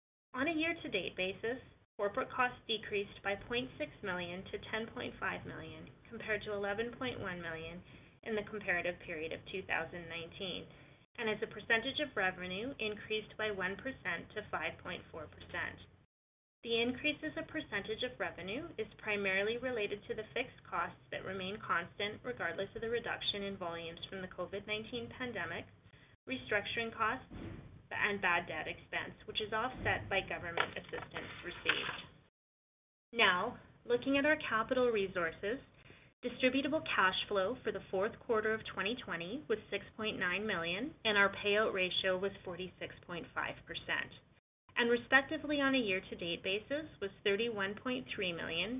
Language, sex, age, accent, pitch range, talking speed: English, female, 20-39, American, 185-240 Hz, 135 wpm